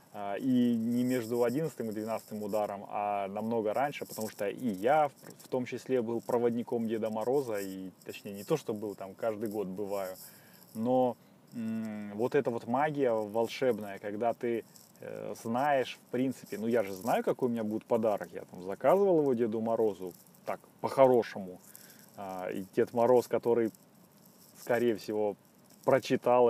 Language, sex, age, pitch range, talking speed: Russian, male, 20-39, 105-125 Hz, 155 wpm